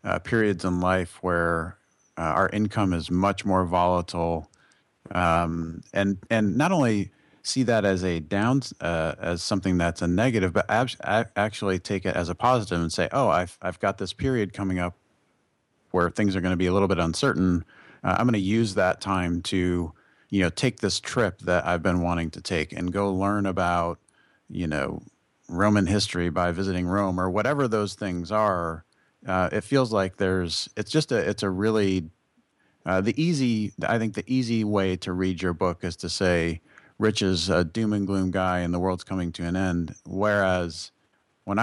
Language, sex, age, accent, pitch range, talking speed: English, male, 40-59, American, 90-105 Hz, 190 wpm